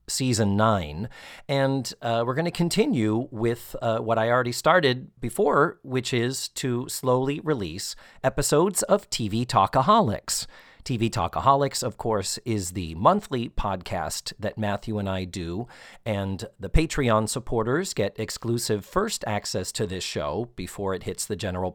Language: English